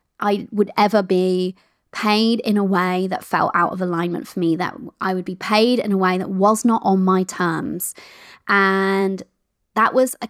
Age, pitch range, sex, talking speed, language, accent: 20-39, 185-230 Hz, female, 190 wpm, English, British